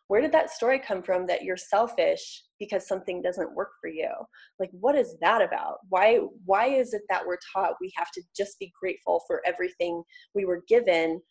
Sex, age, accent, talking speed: female, 20-39, American, 200 wpm